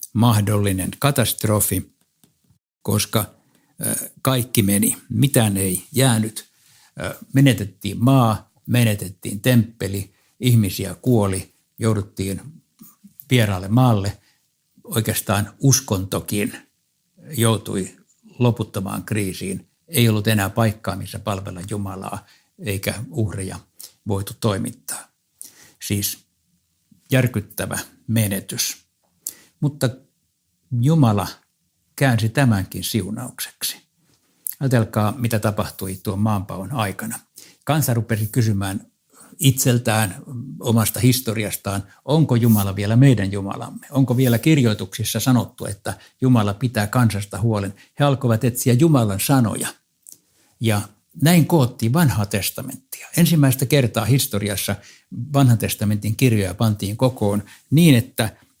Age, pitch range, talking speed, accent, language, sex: 60-79, 100-125 Hz, 90 wpm, native, Finnish, male